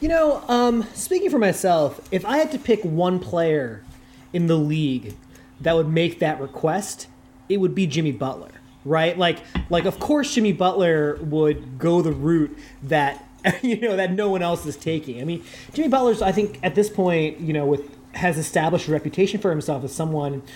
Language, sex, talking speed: English, male, 195 wpm